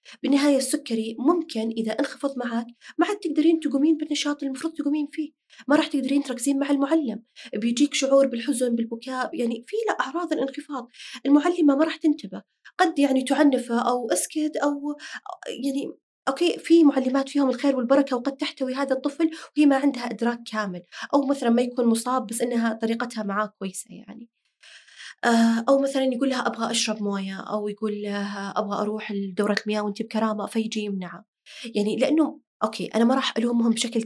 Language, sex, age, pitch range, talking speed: Arabic, female, 20-39, 220-280 Hz, 165 wpm